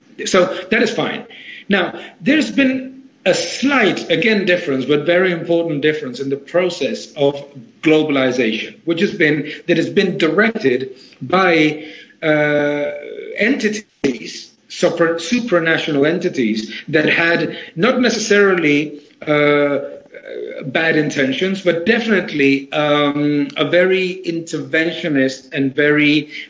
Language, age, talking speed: English, 50-69, 110 wpm